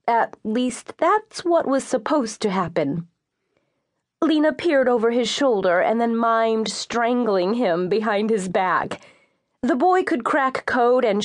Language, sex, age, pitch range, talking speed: English, female, 30-49, 195-260 Hz, 145 wpm